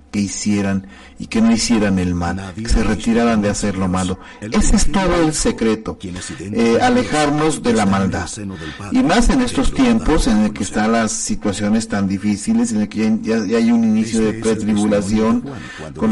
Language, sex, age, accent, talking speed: Spanish, male, 40-59, Mexican, 180 wpm